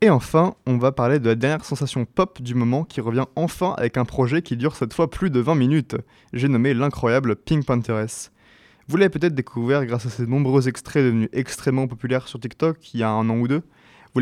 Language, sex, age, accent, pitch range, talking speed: French, male, 20-39, French, 120-150 Hz, 225 wpm